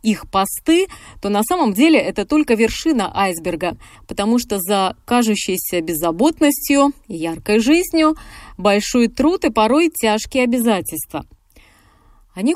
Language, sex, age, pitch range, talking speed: Russian, female, 20-39, 190-255 Hz, 115 wpm